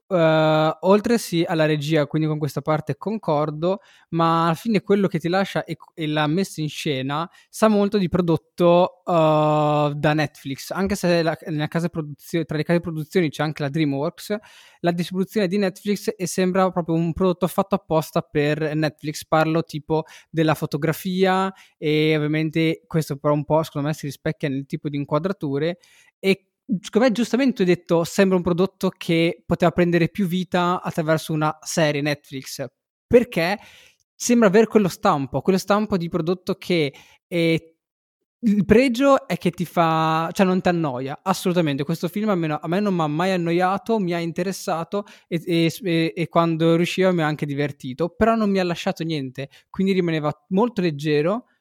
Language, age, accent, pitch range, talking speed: Italian, 20-39, native, 155-190 Hz, 170 wpm